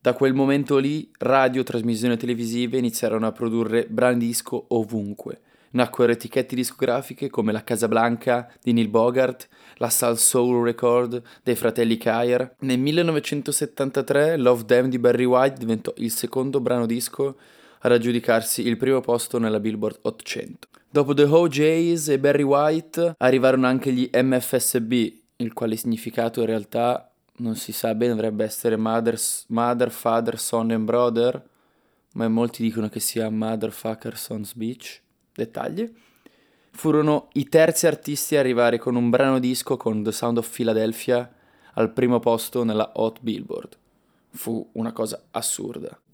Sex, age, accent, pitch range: male, 20-39, native, 115-130 Hz